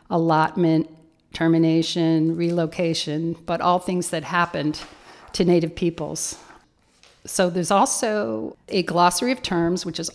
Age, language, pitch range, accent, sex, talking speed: 50-69, English, 165-195 Hz, American, female, 120 wpm